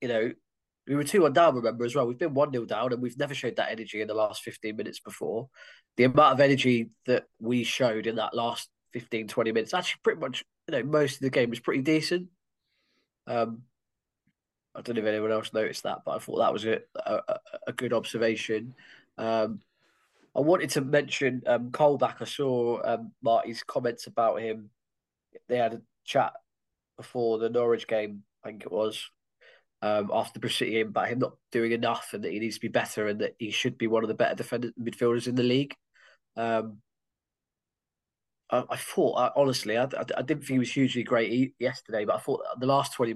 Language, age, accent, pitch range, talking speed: English, 20-39, British, 115-140 Hz, 205 wpm